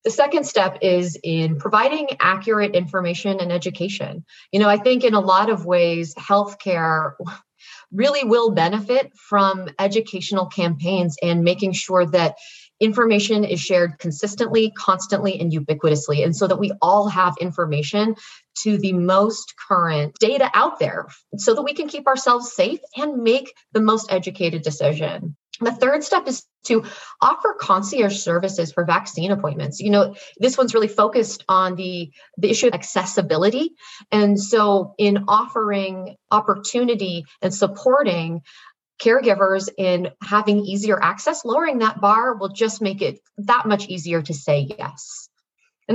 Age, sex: 30-49, female